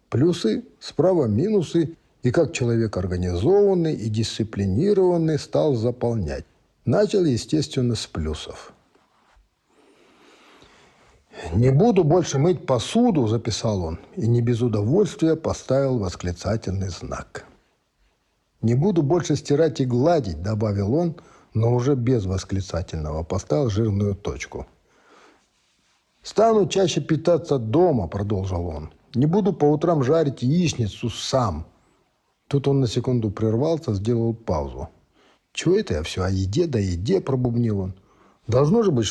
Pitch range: 100-145 Hz